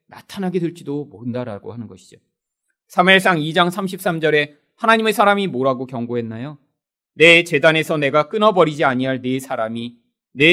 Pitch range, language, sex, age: 150-240 Hz, Korean, male, 30-49